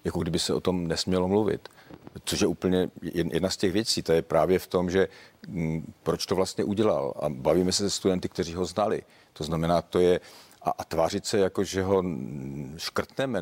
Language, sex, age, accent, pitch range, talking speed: Czech, male, 50-69, native, 85-95 Hz, 200 wpm